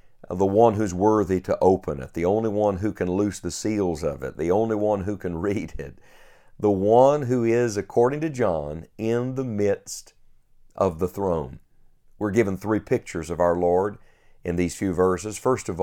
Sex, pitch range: male, 90-115 Hz